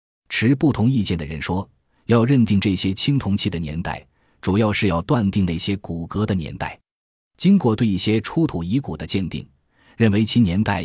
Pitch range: 85-115 Hz